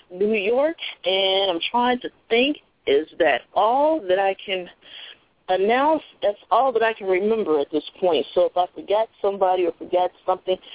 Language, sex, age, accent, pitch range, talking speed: English, female, 30-49, American, 175-265 Hz, 175 wpm